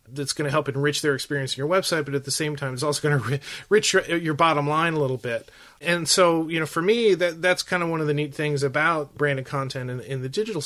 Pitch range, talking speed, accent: 135-160 Hz, 275 wpm, American